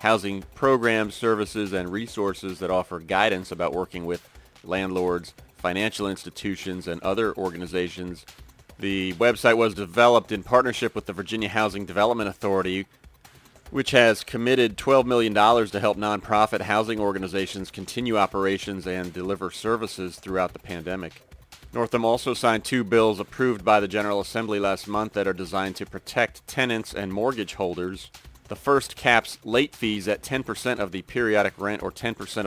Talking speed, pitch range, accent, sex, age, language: 150 wpm, 95-115 Hz, American, male, 30-49, English